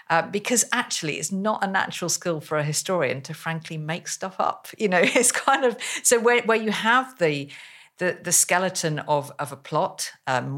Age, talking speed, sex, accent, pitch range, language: 50-69, 200 wpm, female, British, 140-175 Hz, English